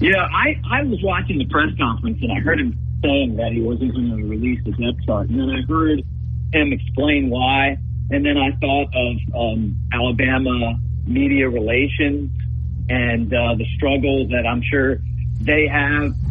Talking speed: 180 wpm